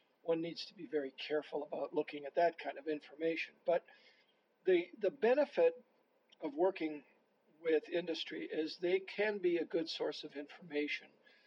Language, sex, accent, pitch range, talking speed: English, male, American, 145-210 Hz, 155 wpm